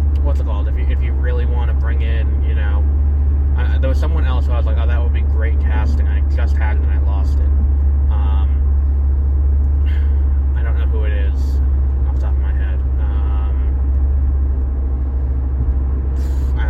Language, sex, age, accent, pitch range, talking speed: English, male, 20-39, American, 70-75 Hz, 185 wpm